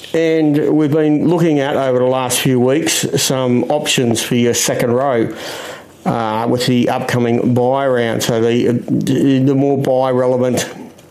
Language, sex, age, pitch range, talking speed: English, male, 60-79, 125-150 Hz, 150 wpm